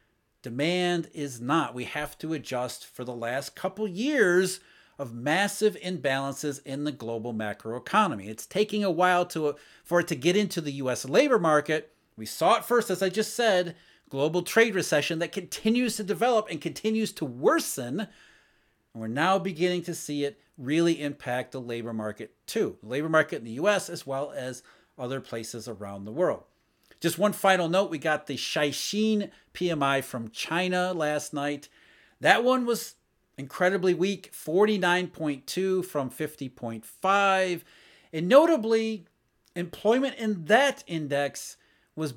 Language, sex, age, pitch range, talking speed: English, male, 40-59, 135-190 Hz, 150 wpm